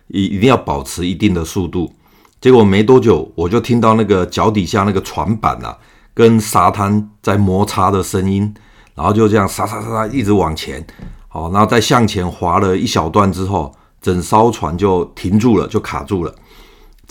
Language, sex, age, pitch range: Chinese, male, 50-69, 90-110 Hz